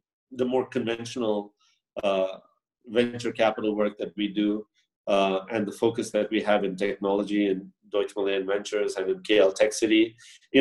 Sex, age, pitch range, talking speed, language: male, 30-49, 100-120 Hz, 165 wpm, English